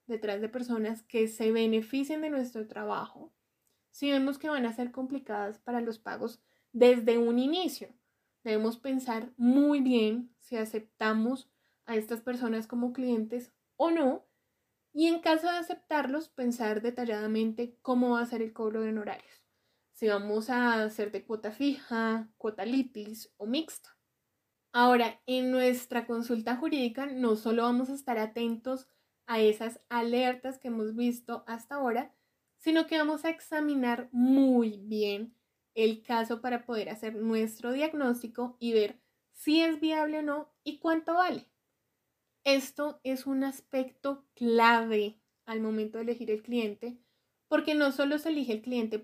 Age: 10-29